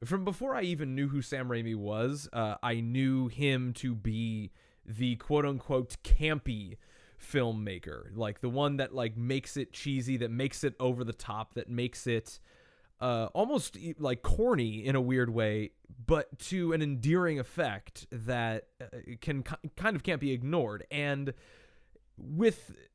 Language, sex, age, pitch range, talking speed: English, male, 20-39, 120-155 Hz, 155 wpm